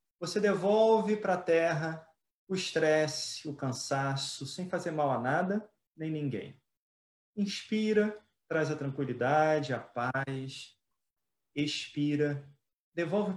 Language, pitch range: Portuguese, 135-185 Hz